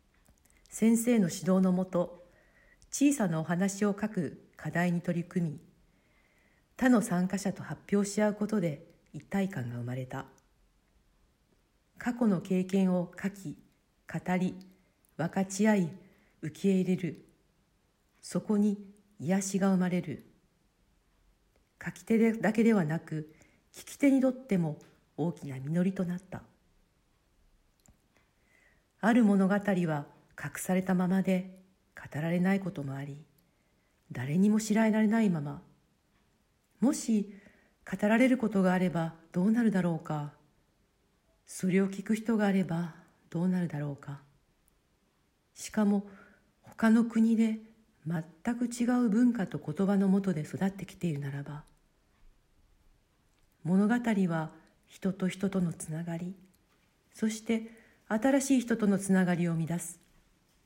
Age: 50-69